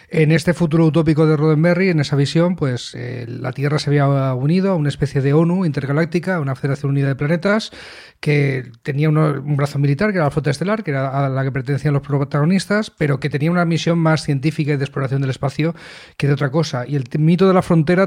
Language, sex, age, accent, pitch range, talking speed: Spanish, male, 30-49, Spanish, 140-160 Hz, 230 wpm